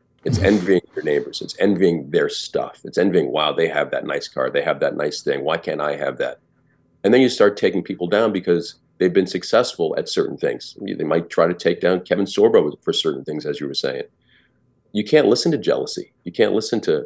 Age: 40-59